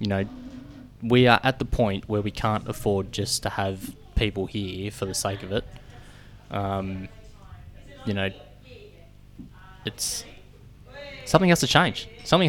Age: 20-39